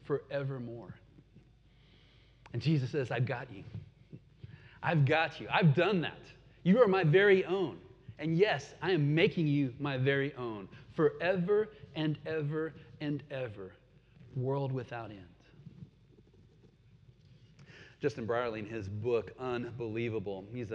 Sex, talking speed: male, 120 wpm